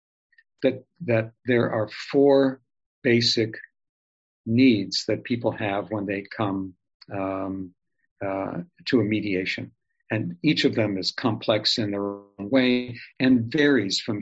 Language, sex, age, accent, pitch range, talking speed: English, male, 50-69, American, 100-125 Hz, 130 wpm